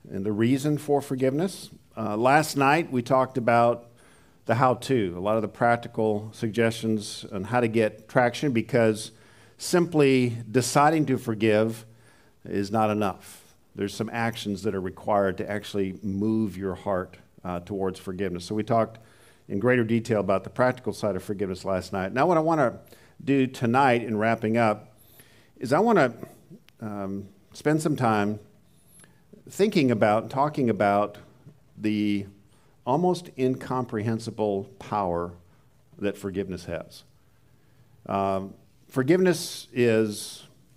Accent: American